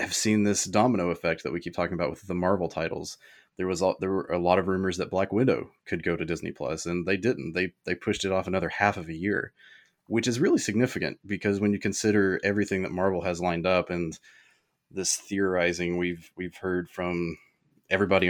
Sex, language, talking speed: male, English, 215 wpm